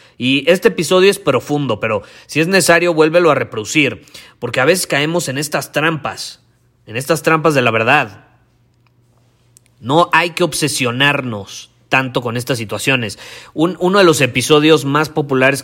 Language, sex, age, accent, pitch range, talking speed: Spanish, male, 30-49, Mexican, 120-150 Hz, 150 wpm